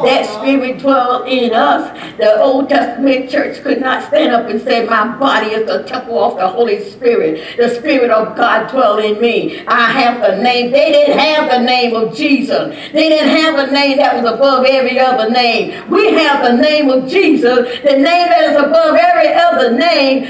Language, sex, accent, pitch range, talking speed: English, female, American, 250-315 Hz, 200 wpm